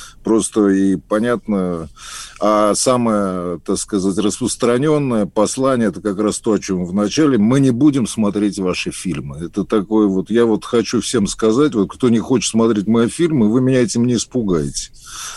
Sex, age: male, 50-69